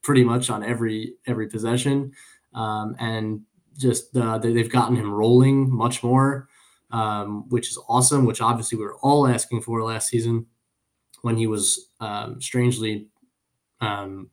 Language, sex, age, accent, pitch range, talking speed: English, male, 20-39, American, 115-130 Hz, 145 wpm